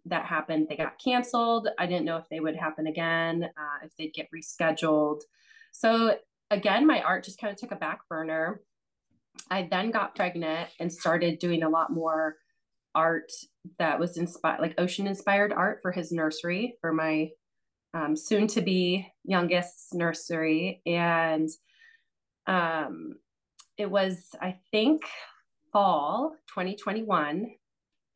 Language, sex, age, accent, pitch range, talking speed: English, female, 30-49, American, 160-210 Hz, 140 wpm